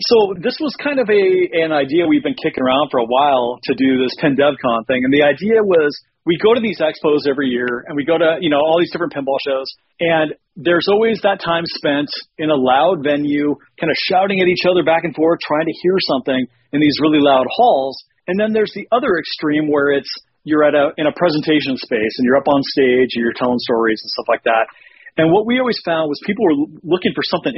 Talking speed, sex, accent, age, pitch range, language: 235 wpm, male, American, 40-59, 140-180 Hz, English